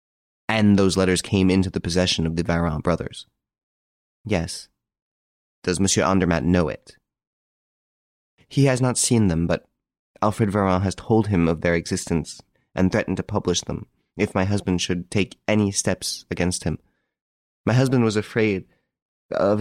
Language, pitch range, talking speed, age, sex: English, 85-110 Hz, 155 wpm, 30-49, male